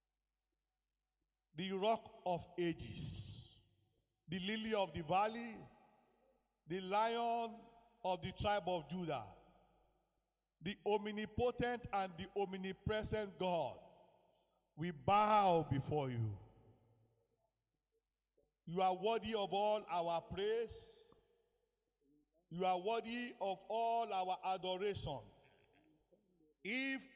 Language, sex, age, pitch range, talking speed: English, male, 50-69, 170-225 Hz, 90 wpm